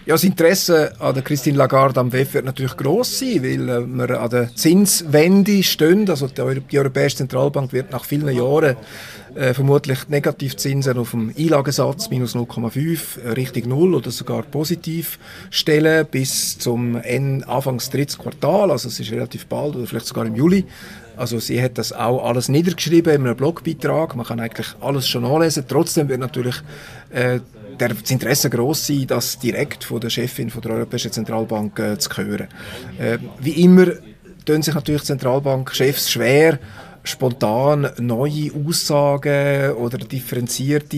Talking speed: 155 wpm